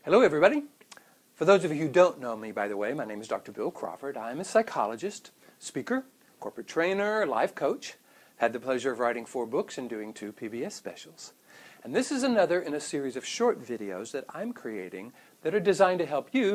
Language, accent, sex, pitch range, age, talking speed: English, American, male, 150-215 Hz, 60-79, 210 wpm